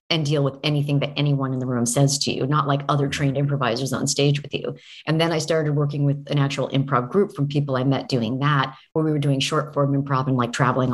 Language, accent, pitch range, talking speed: English, American, 135-155 Hz, 260 wpm